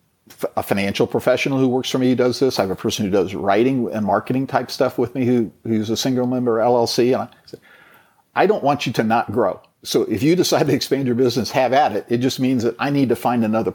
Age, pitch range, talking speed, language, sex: 50-69, 105-125 Hz, 255 wpm, English, male